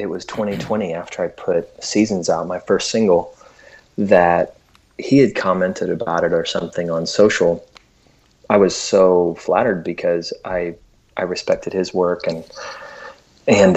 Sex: male